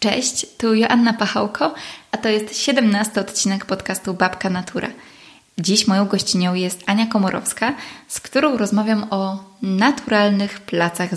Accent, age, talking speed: native, 20-39, 130 wpm